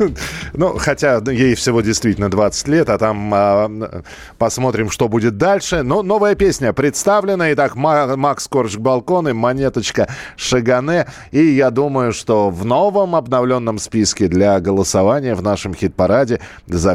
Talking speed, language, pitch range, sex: 140 wpm, Russian, 100-140 Hz, male